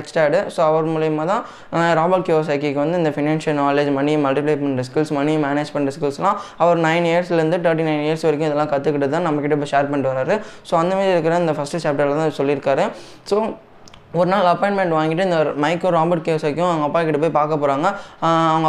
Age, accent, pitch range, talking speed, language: 10-29, native, 145-175 Hz, 185 wpm, Tamil